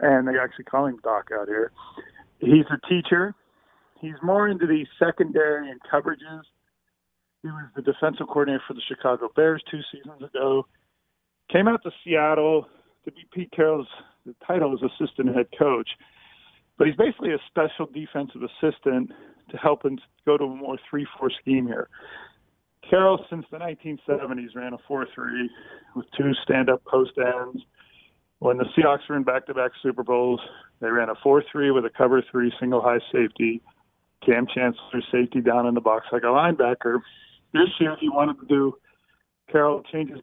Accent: American